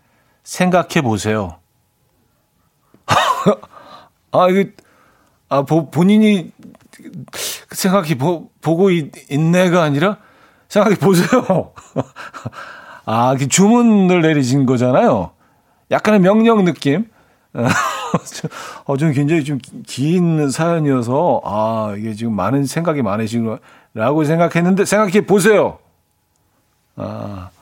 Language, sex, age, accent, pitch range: Korean, male, 40-59, native, 110-170 Hz